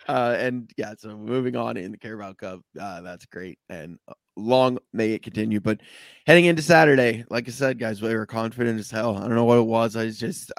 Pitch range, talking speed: 110-125 Hz, 225 wpm